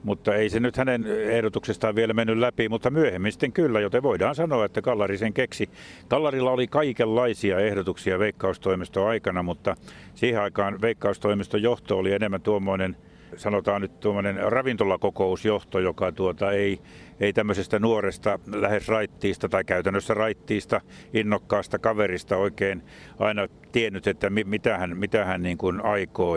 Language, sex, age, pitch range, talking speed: Finnish, male, 60-79, 100-120 Hz, 135 wpm